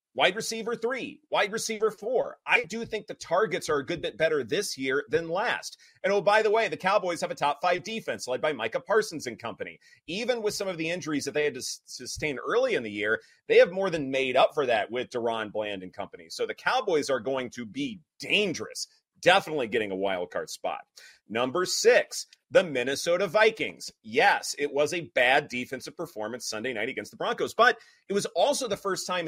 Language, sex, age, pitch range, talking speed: English, male, 30-49, 150-225 Hz, 215 wpm